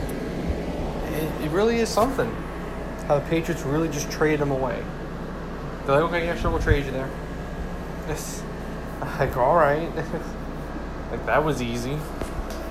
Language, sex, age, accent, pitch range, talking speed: English, male, 20-39, American, 125-165 Hz, 135 wpm